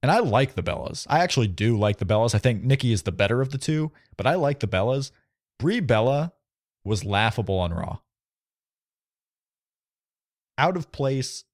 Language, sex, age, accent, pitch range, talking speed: English, male, 30-49, American, 105-140 Hz, 175 wpm